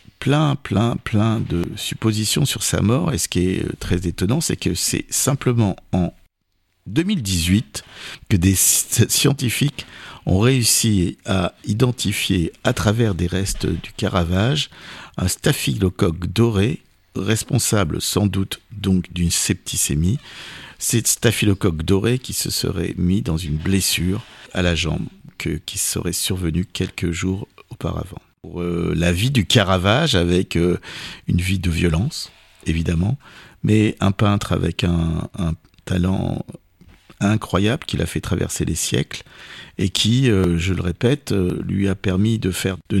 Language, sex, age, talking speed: French, male, 50-69, 135 wpm